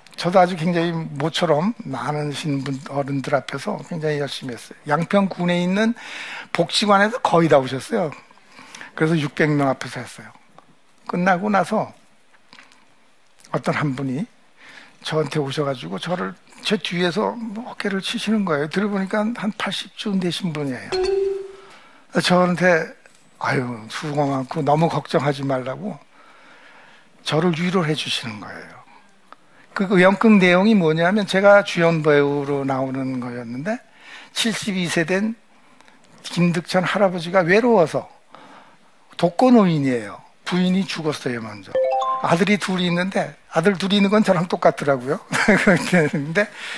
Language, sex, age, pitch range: Korean, male, 60-79, 150-215 Hz